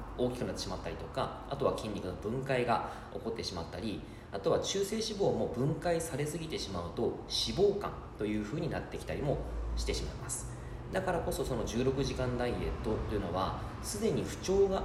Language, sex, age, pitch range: Japanese, male, 20-39, 95-135 Hz